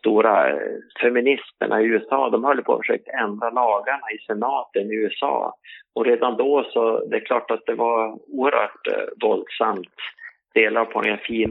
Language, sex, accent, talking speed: Swedish, male, Norwegian, 160 wpm